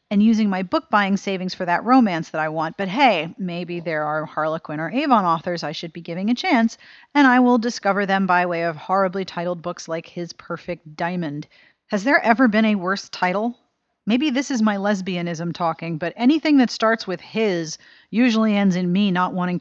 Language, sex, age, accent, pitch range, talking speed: English, female, 40-59, American, 175-245 Hz, 205 wpm